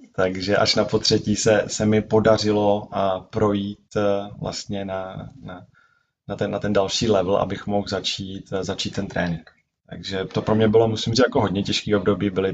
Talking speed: 175 wpm